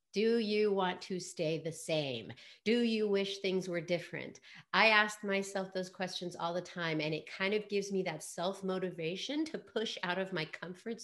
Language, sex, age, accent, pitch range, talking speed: English, female, 40-59, American, 165-210 Hz, 190 wpm